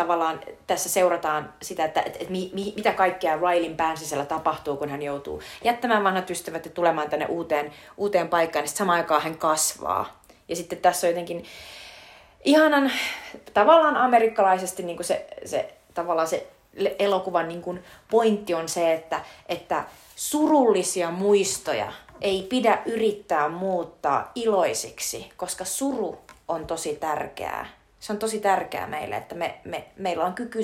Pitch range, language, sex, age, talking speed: 160-215 Hz, Finnish, female, 30-49, 135 wpm